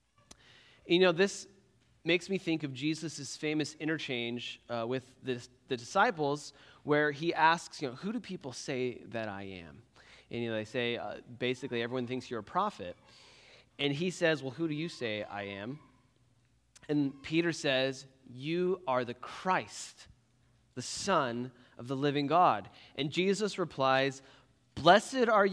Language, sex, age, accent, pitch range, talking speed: English, male, 30-49, American, 125-165 Hz, 155 wpm